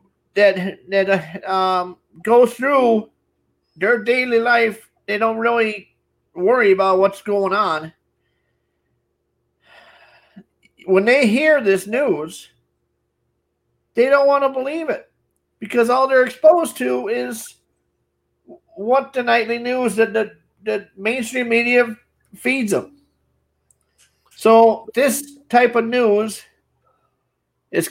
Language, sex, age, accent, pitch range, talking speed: English, male, 50-69, American, 170-245 Hz, 110 wpm